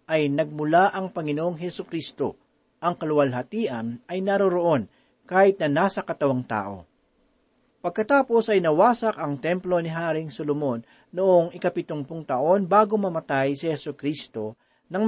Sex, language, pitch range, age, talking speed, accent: male, Filipino, 145-200 Hz, 40-59, 125 wpm, native